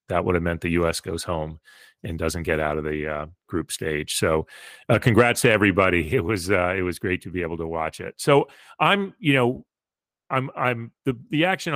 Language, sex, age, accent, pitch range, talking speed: English, male, 40-59, American, 90-115 Hz, 225 wpm